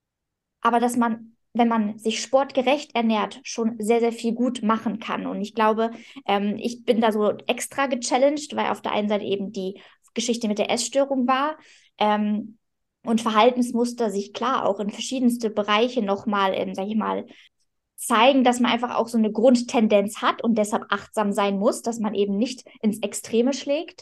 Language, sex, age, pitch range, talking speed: German, female, 20-39, 215-255 Hz, 180 wpm